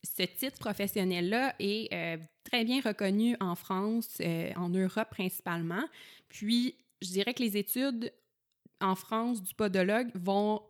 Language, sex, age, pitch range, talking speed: French, female, 20-39, 180-215 Hz, 140 wpm